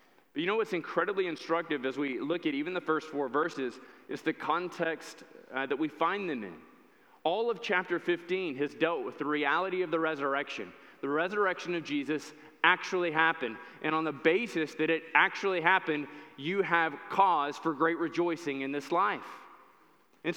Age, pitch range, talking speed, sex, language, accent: 20-39, 160-200 Hz, 175 wpm, male, English, American